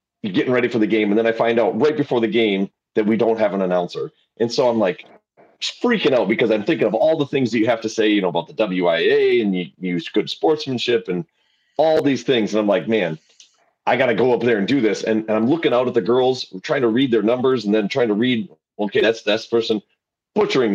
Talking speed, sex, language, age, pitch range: 255 wpm, male, English, 30-49, 105-135 Hz